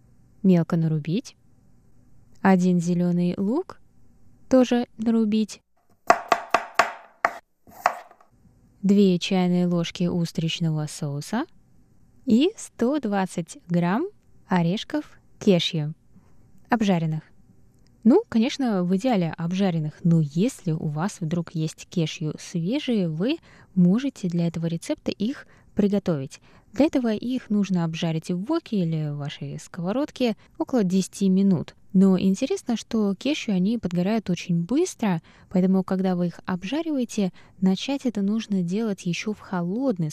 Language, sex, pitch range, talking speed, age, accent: Russian, female, 165-220 Hz, 110 wpm, 20-39, native